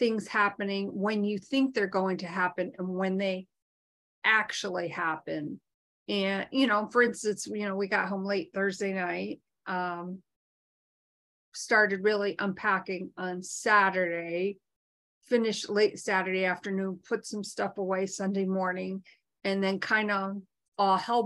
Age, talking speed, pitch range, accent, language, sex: 40-59, 140 wpm, 185-210 Hz, American, English, female